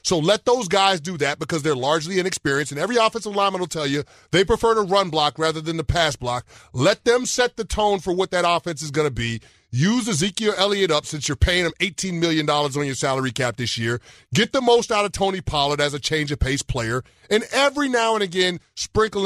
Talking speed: 225 wpm